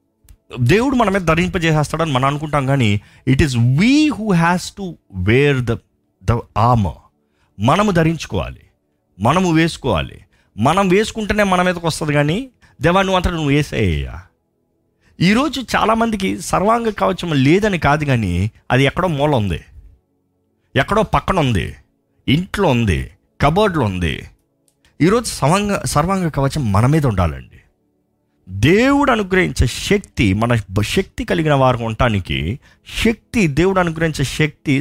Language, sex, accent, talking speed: Telugu, male, native, 120 wpm